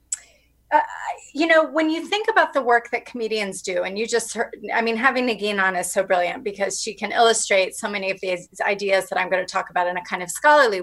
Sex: female